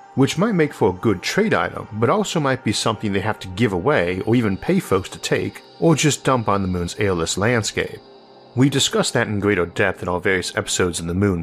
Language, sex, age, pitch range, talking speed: English, male, 50-69, 95-125 Hz, 240 wpm